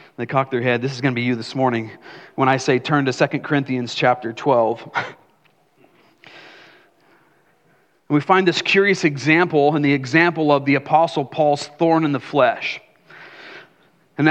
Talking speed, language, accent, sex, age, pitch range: 160 wpm, English, American, male, 40-59, 160-215 Hz